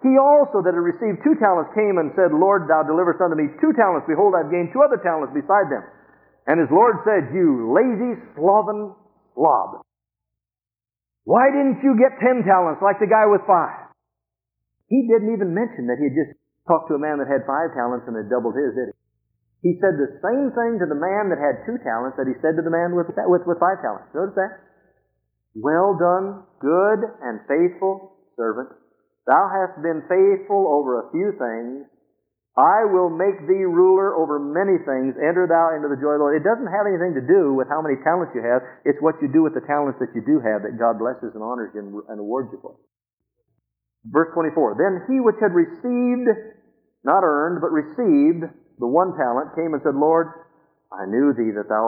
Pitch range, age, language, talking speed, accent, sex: 135-200 Hz, 50-69, English, 205 wpm, American, male